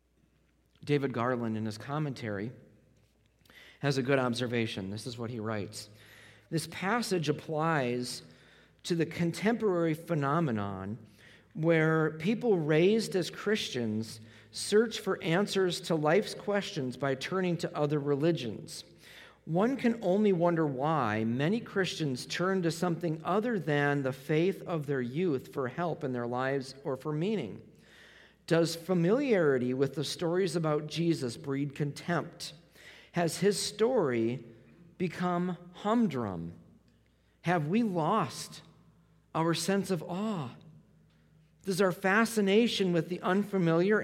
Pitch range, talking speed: 135-180 Hz, 120 wpm